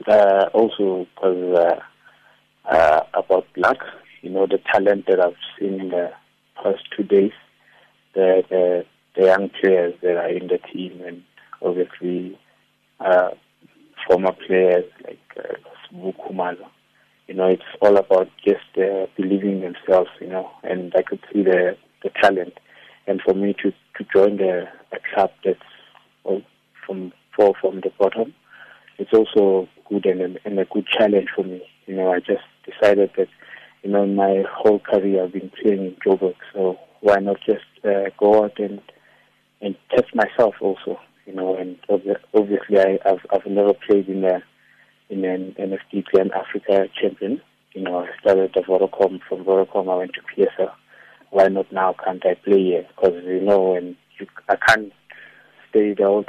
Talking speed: 165 wpm